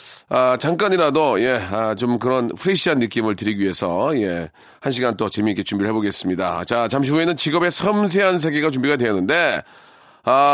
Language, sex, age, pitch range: Korean, male, 40-59, 125-190 Hz